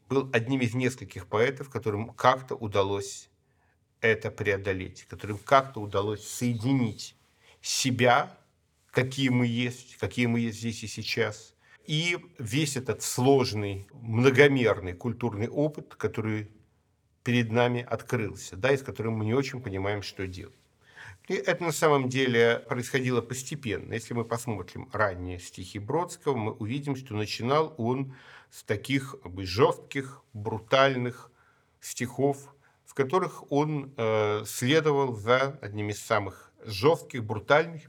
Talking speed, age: 125 wpm, 50-69